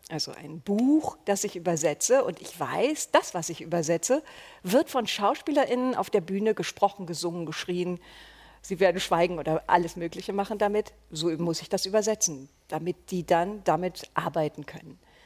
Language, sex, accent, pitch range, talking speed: German, female, German, 170-225 Hz, 160 wpm